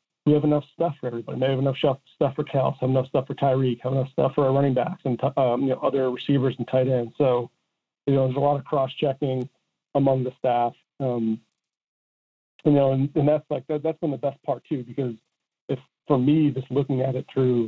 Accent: American